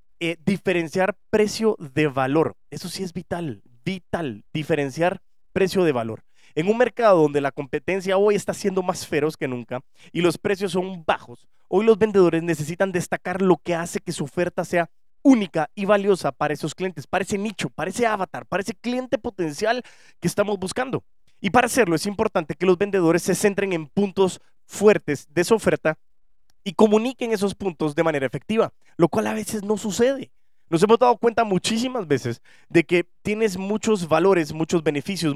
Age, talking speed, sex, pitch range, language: 20-39, 180 wpm, male, 160-205 Hz, Spanish